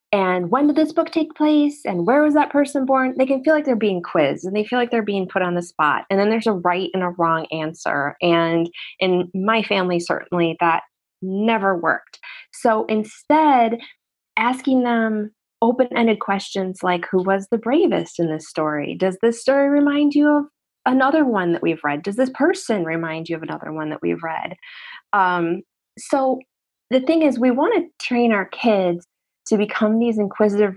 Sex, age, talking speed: female, 20-39, 190 wpm